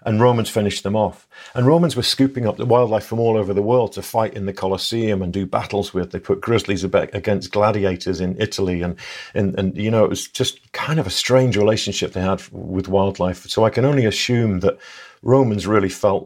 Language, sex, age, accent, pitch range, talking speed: English, male, 50-69, British, 95-115 Hz, 220 wpm